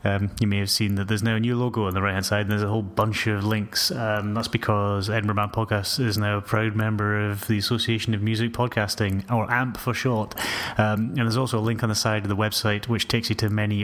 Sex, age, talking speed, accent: male, 30-49, 265 wpm, British